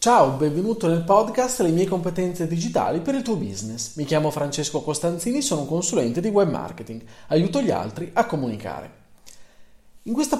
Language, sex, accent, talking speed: Italian, male, native, 165 wpm